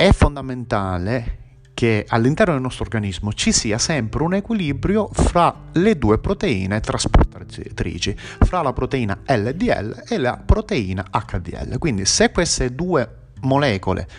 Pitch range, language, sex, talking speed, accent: 100-150 Hz, Italian, male, 125 wpm, native